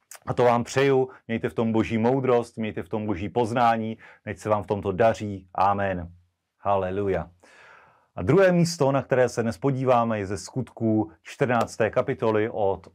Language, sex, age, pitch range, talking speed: Slovak, male, 40-59, 115-145 Hz, 165 wpm